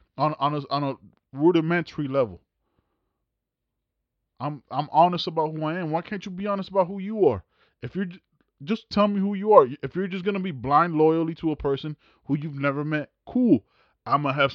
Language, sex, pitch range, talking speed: English, male, 130-170 Hz, 215 wpm